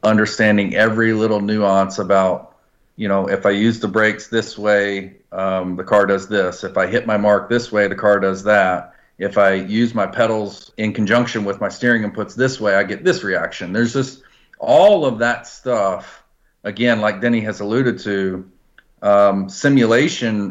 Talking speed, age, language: 180 wpm, 40-59, English